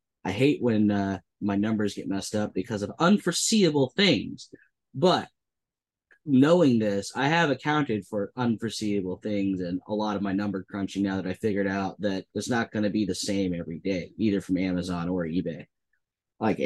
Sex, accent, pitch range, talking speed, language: male, American, 95-115 Hz, 180 wpm, English